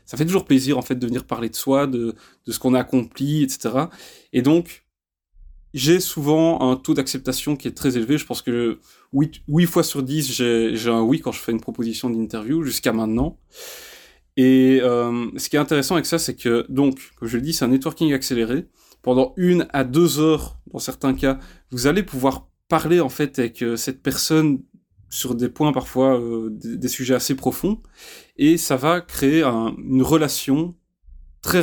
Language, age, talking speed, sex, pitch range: French, 20-39, 195 wpm, male, 125-160 Hz